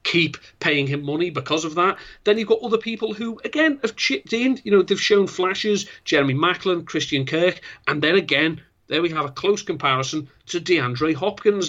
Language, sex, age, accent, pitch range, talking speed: English, male, 40-59, British, 140-200 Hz, 195 wpm